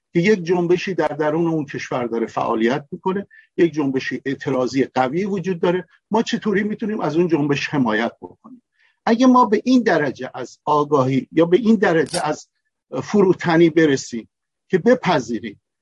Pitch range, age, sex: 135-200 Hz, 50-69, male